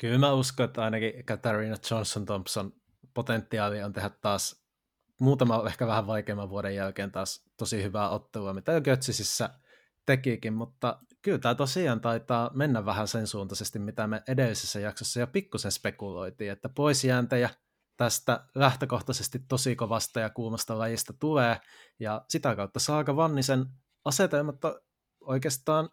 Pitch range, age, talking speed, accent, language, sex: 110-140 Hz, 20-39, 135 wpm, native, Finnish, male